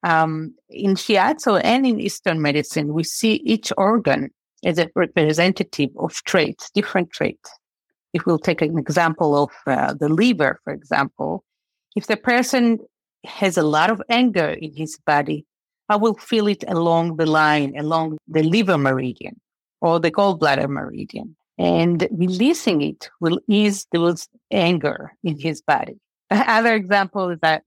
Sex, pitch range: female, 155-210 Hz